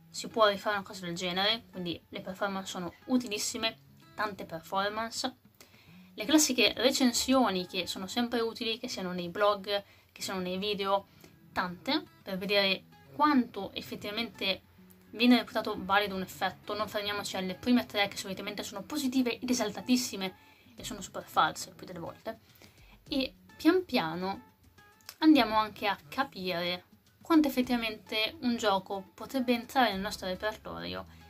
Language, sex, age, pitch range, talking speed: Italian, female, 20-39, 185-230 Hz, 140 wpm